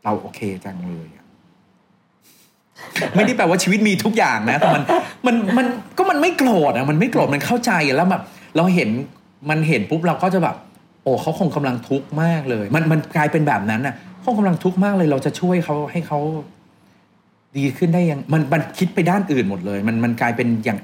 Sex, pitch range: male, 120-175 Hz